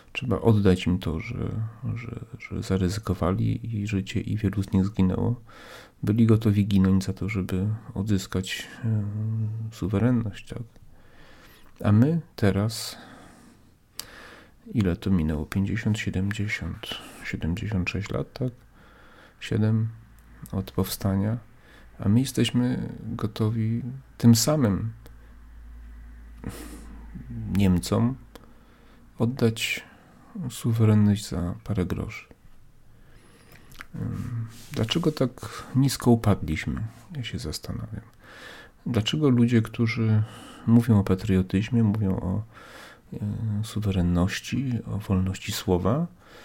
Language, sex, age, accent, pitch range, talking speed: Polish, male, 40-59, native, 95-115 Hz, 90 wpm